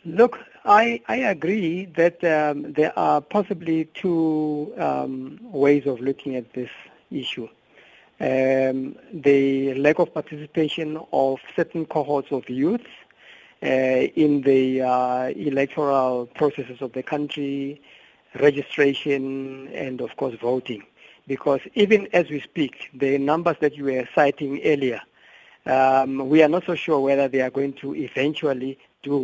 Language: English